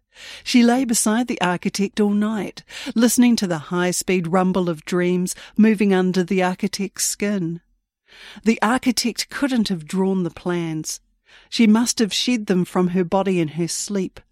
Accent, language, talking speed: Australian, English, 155 wpm